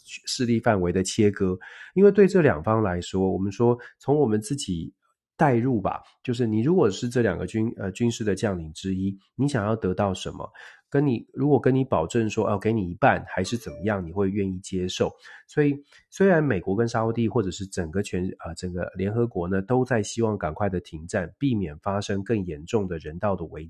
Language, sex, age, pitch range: Chinese, male, 30-49, 95-120 Hz